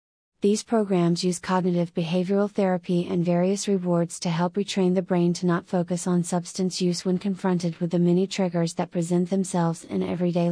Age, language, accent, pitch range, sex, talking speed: 30-49, English, American, 175-200 Hz, female, 175 wpm